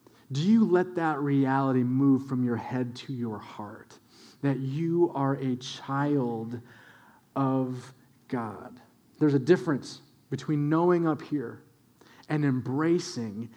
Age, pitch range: 30-49, 130-215 Hz